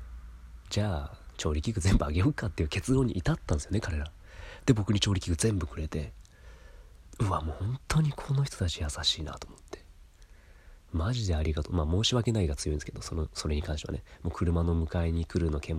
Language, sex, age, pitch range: Japanese, male, 30-49, 80-100 Hz